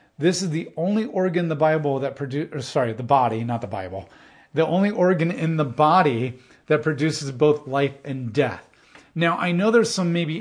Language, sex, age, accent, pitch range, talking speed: English, male, 40-59, American, 130-165 Hz, 200 wpm